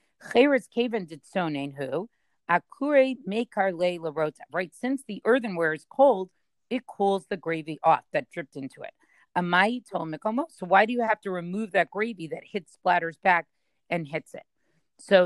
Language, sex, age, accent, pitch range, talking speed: English, female, 40-59, American, 160-210 Hz, 135 wpm